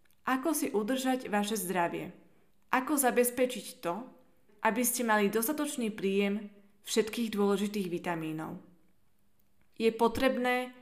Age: 20-39